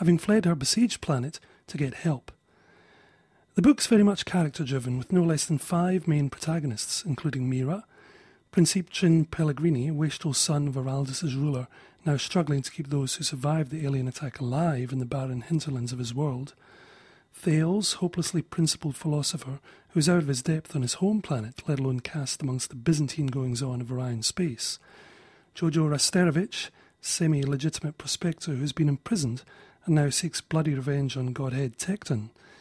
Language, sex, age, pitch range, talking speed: English, male, 30-49, 135-175 Hz, 160 wpm